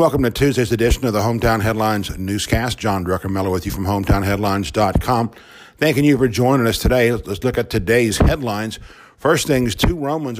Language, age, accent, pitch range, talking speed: English, 50-69, American, 105-130 Hz, 180 wpm